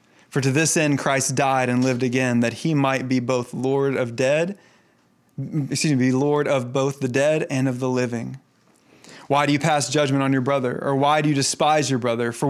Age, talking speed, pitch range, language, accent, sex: 20-39, 210 wpm, 145-215 Hz, English, American, male